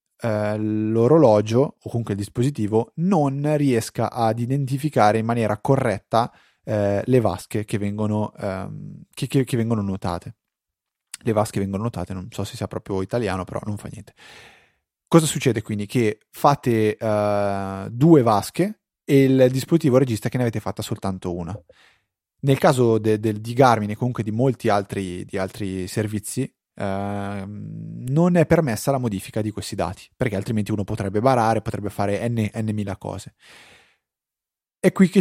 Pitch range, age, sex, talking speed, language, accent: 105-135 Hz, 30-49, male, 155 wpm, Italian, native